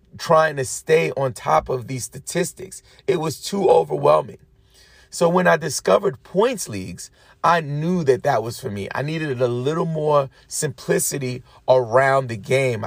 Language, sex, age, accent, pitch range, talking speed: English, male, 30-49, American, 125-155 Hz, 160 wpm